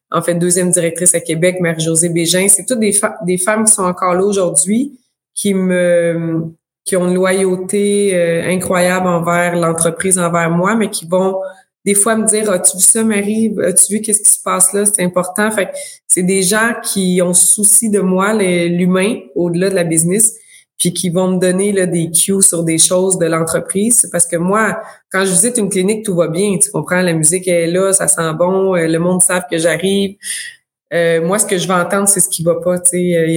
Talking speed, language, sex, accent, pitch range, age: 215 wpm, French, female, Canadian, 175-200 Hz, 20-39